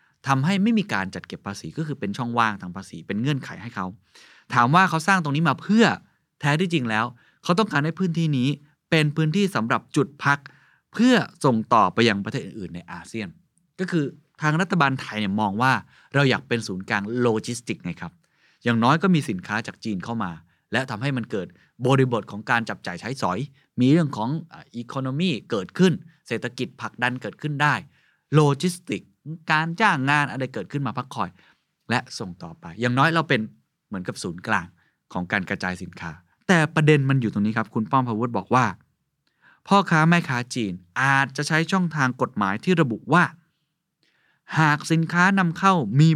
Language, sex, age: Thai, male, 20-39